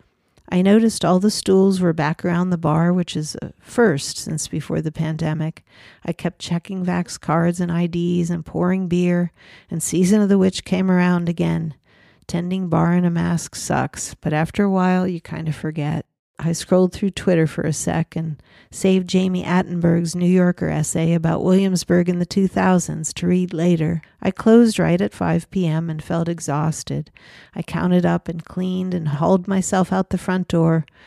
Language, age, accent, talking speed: English, 50-69, American, 180 wpm